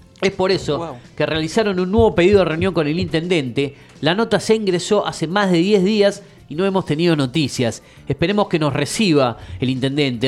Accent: Argentinian